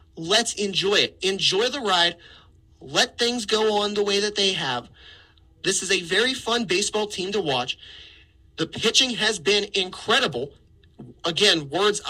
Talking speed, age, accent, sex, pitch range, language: 155 wpm, 30-49, American, male, 170-210 Hz, English